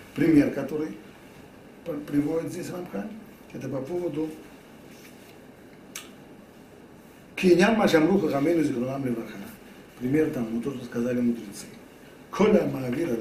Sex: male